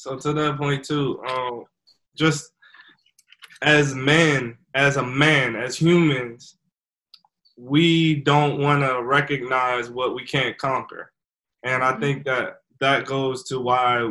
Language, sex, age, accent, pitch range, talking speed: English, male, 20-39, American, 130-160 Hz, 130 wpm